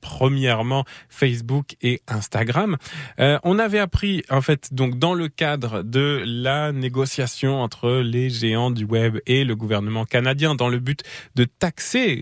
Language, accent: French, French